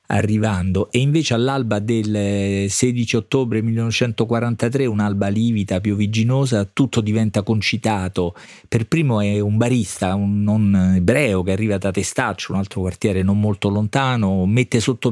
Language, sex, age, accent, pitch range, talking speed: Italian, male, 40-59, native, 105-125 Hz, 135 wpm